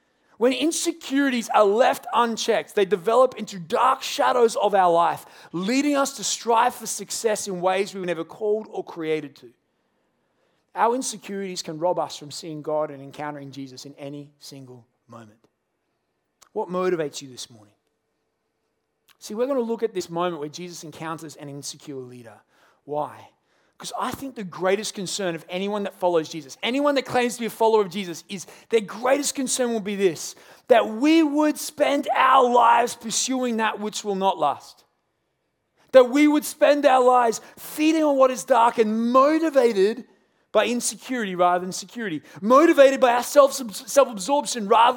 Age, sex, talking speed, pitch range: 30-49, male, 165 wpm, 165-245 Hz